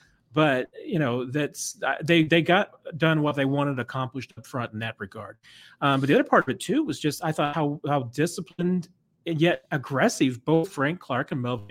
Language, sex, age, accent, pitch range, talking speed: English, male, 30-49, American, 125-160 Hz, 205 wpm